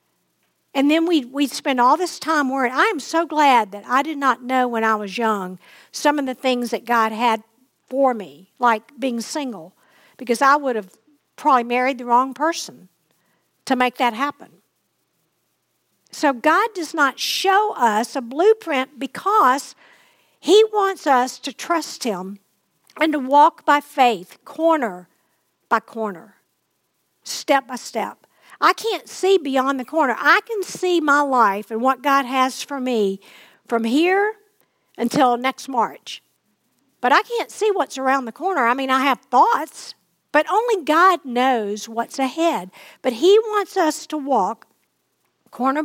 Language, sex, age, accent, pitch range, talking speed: English, female, 50-69, American, 240-310 Hz, 160 wpm